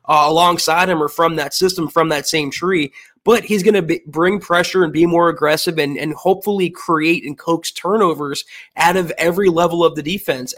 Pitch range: 150-180 Hz